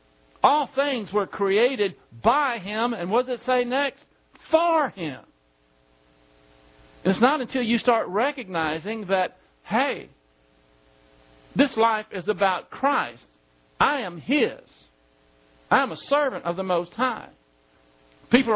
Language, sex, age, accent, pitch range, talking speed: English, male, 60-79, American, 155-245 Hz, 125 wpm